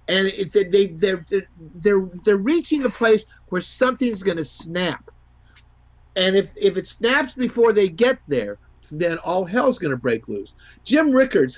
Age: 50-69